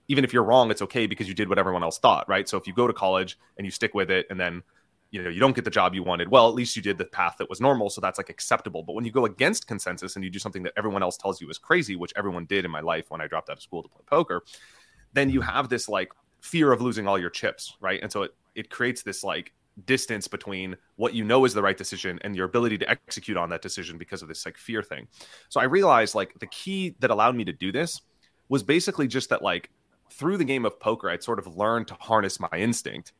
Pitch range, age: 95-120 Hz, 30-49